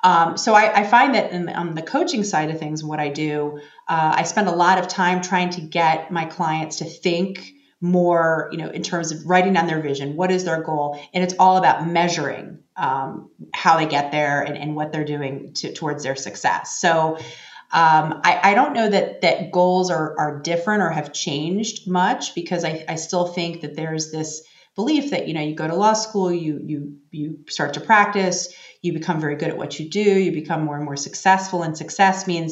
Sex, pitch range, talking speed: female, 155-190 Hz, 220 wpm